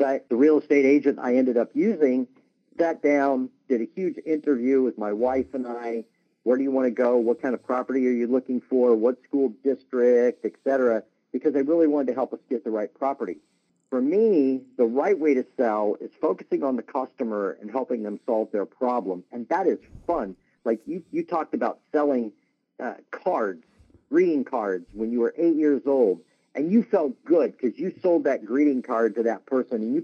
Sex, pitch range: male, 120-145 Hz